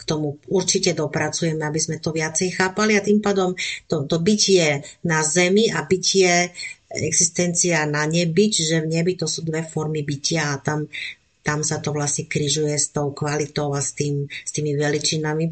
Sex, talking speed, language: female, 180 wpm, Slovak